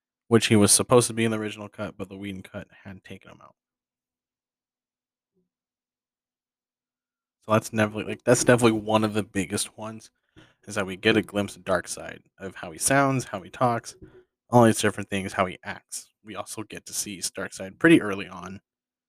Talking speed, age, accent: 180 wpm, 20-39, American